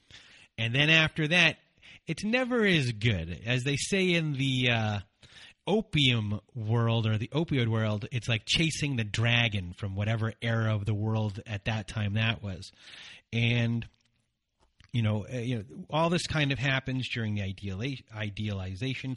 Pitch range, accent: 105-125 Hz, American